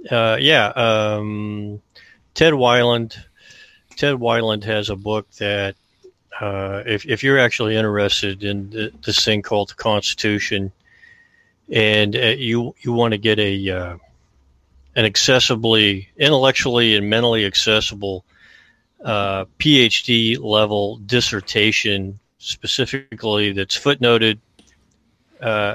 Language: English